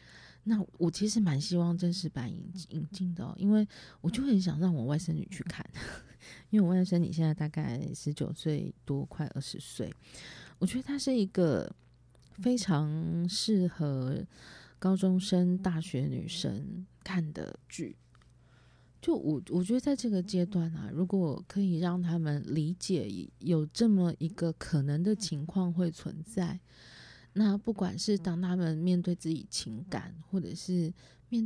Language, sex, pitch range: Chinese, female, 155-195 Hz